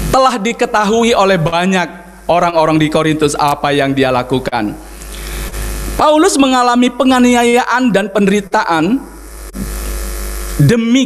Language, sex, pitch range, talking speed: Indonesian, male, 170-245 Hz, 90 wpm